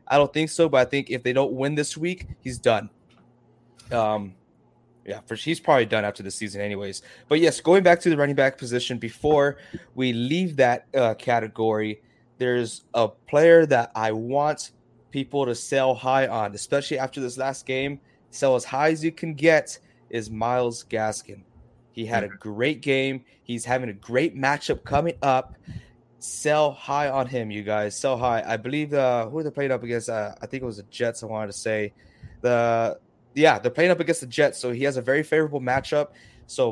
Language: English